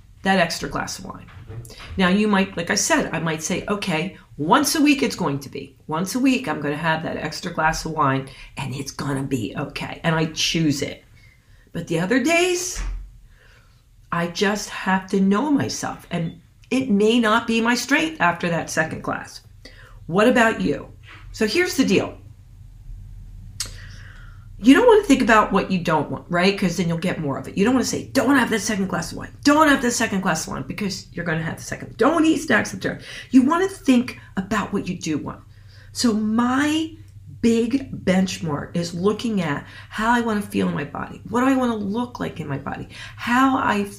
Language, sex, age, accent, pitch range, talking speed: English, female, 40-59, American, 135-230 Hz, 220 wpm